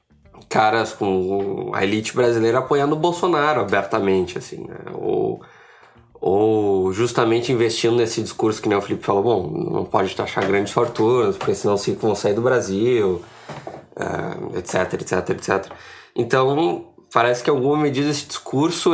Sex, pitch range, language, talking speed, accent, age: male, 105-140 Hz, Portuguese, 145 wpm, Brazilian, 20-39